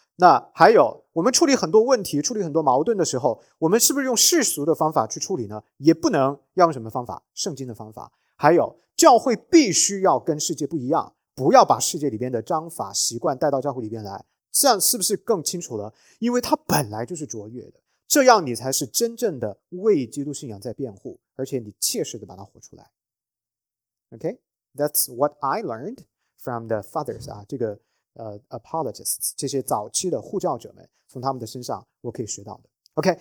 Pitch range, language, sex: 115-170 Hz, English, male